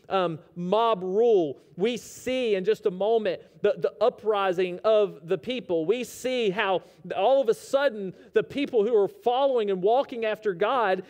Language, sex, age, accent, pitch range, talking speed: English, male, 40-59, American, 200-290 Hz, 170 wpm